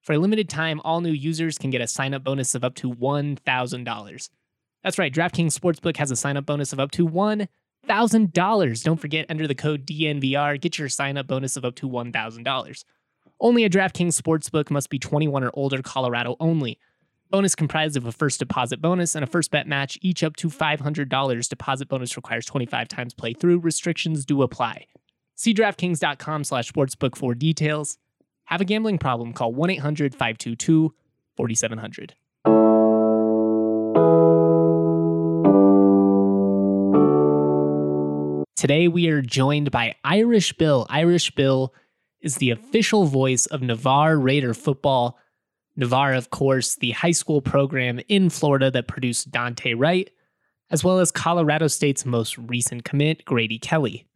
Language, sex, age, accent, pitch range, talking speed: English, male, 20-39, American, 120-160 Hz, 145 wpm